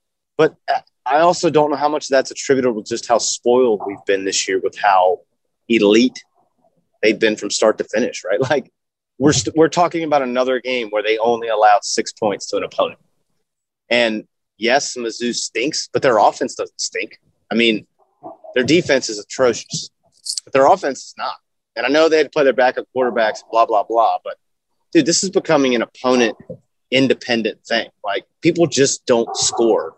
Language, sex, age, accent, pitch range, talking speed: English, male, 30-49, American, 115-195 Hz, 180 wpm